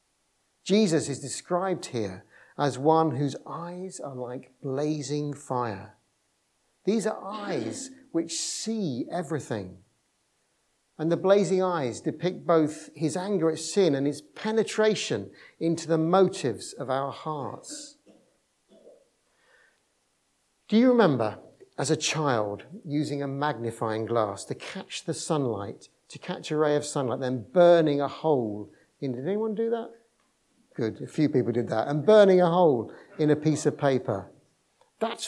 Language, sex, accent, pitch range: English, male, British, 140-195 Hz